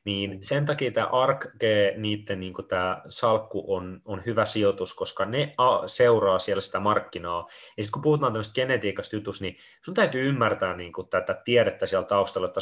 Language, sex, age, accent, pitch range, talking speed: Finnish, male, 30-49, native, 95-120 Hz, 180 wpm